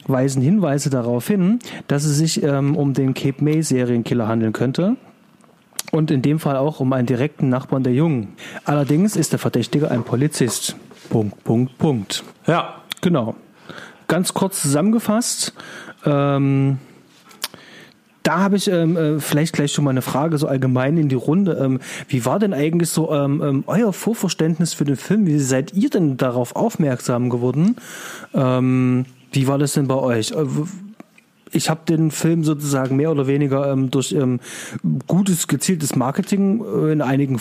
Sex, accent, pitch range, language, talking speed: male, German, 130-170 Hz, German, 150 wpm